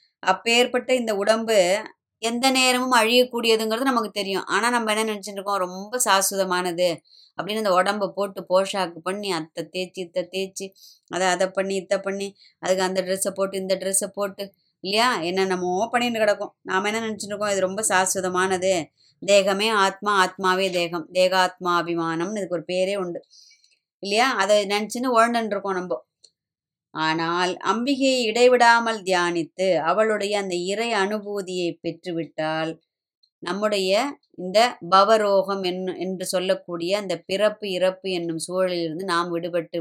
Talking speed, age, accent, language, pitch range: 130 wpm, 20-39, native, Tamil, 180-205 Hz